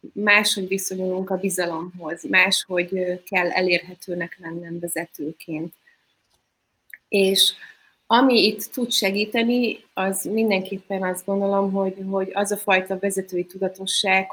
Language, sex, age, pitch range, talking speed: Hungarian, female, 30-49, 170-195 Hz, 105 wpm